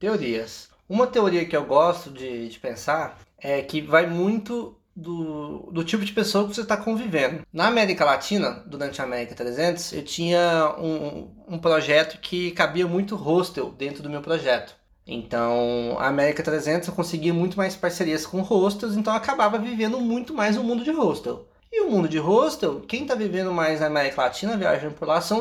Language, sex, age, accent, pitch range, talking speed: Portuguese, male, 20-39, Brazilian, 145-210 Hz, 190 wpm